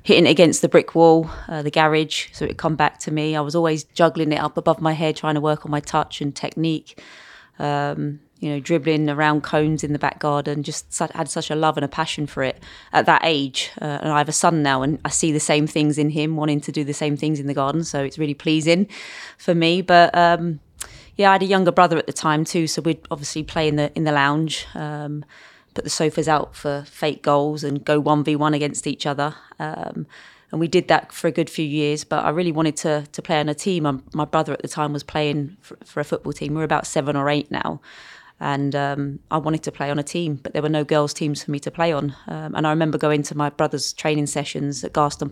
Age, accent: 20-39, British